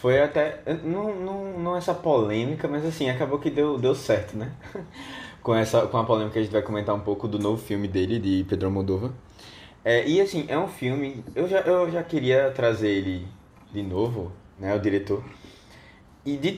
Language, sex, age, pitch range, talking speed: Portuguese, male, 20-39, 105-145 Hz, 195 wpm